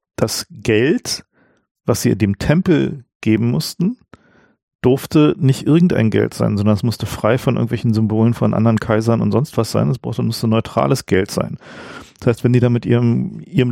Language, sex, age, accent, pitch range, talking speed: German, male, 50-69, German, 115-140 Hz, 180 wpm